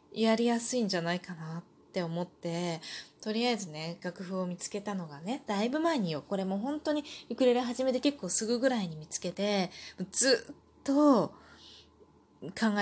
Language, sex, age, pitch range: Japanese, female, 20-39, 180-270 Hz